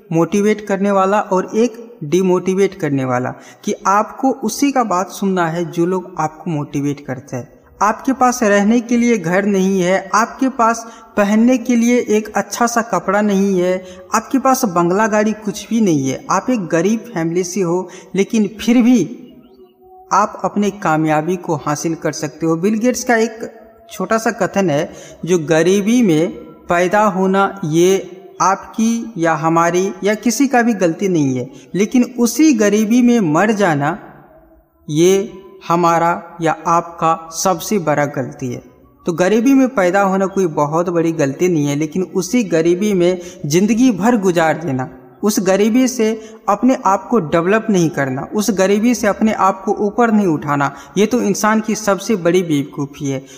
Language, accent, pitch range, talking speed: Hindi, native, 170-220 Hz, 165 wpm